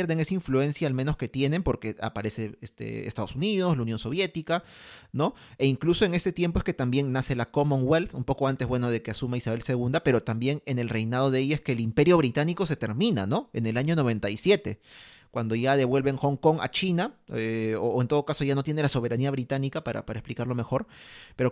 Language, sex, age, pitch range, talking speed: Spanish, male, 30-49, 120-150 Hz, 220 wpm